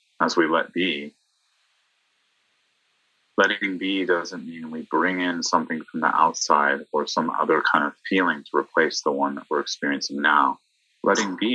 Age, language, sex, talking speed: 30-49, English, male, 160 wpm